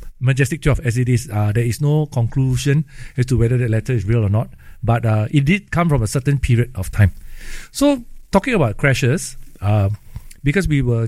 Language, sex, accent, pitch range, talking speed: English, male, Malaysian, 110-145 Hz, 205 wpm